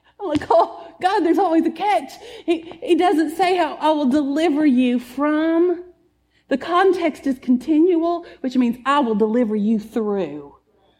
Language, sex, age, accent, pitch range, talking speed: English, female, 40-59, American, 225-315 Hz, 160 wpm